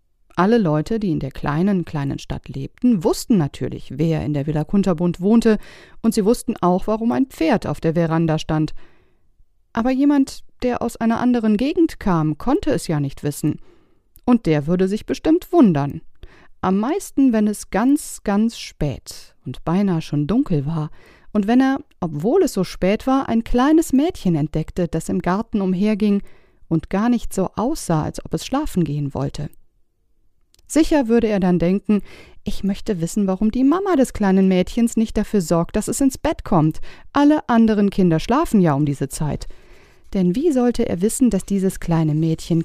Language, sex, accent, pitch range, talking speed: German, female, German, 160-235 Hz, 175 wpm